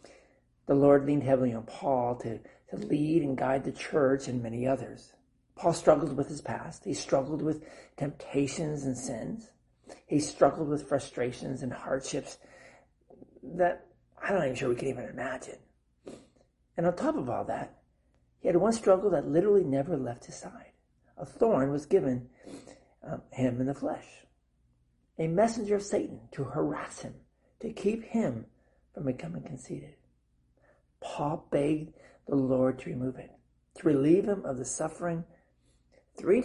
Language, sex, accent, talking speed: English, male, American, 155 wpm